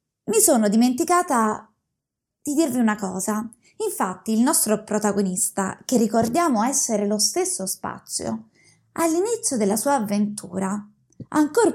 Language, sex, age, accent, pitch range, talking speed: Italian, female, 20-39, native, 210-275 Hz, 110 wpm